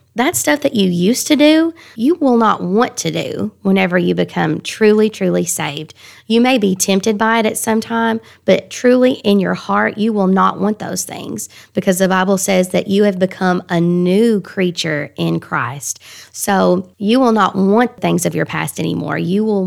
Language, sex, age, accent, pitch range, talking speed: English, female, 20-39, American, 165-215 Hz, 195 wpm